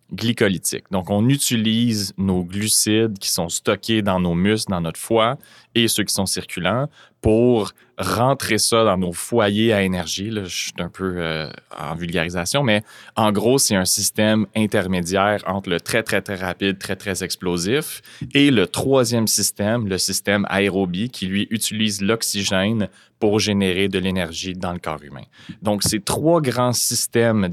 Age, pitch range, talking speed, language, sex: 30-49, 90-115 Hz, 165 wpm, French, male